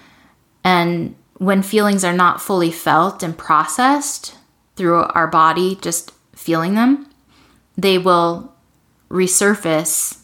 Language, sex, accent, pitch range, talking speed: English, female, American, 160-185 Hz, 105 wpm